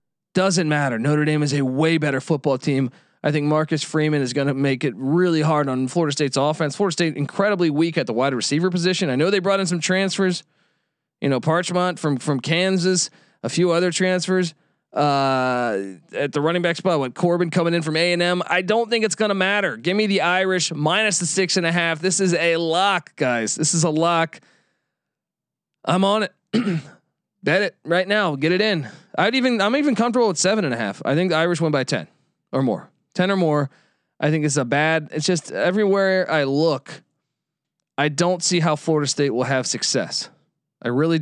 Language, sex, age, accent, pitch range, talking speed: English, male, 20-39, American, 145-180 Hz, 210 wpm